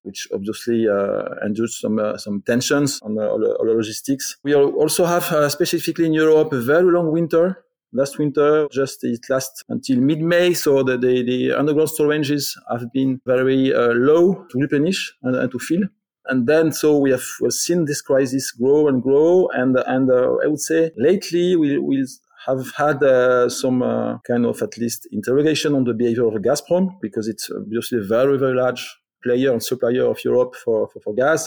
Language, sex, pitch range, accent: English, male, 125-160 Hz, French